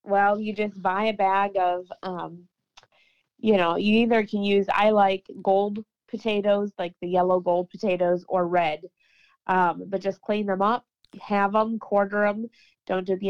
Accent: American